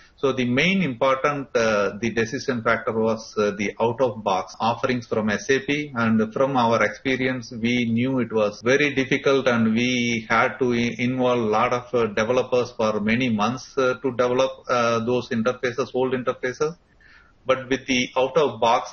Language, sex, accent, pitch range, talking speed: English, male, Indian, 115-135 Hz, 155 wpm